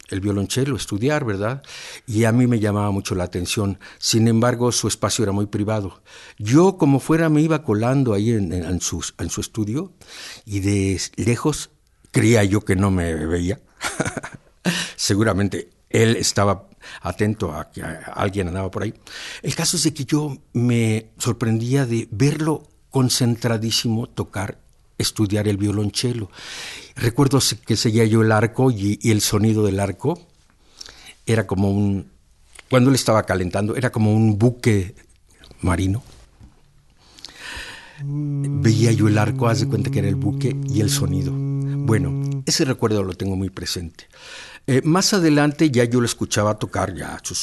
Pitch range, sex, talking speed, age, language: 100-130 Hz, male, 155 wpm, 60-79, Spanish